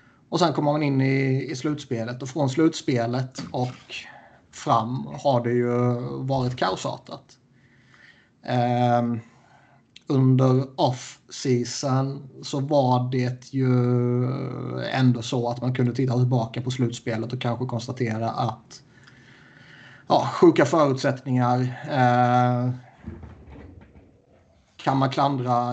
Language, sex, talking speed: Swedish, male, 100 wpm